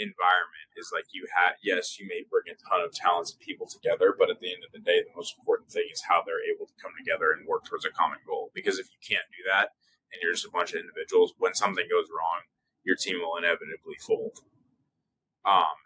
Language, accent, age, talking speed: English, American, 20-39, 240 wpm